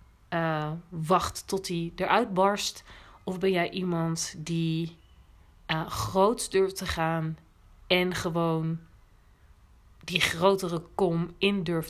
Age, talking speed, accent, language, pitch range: 40-59, 115 wpm, Dutch, Dutch, 160-190 Hz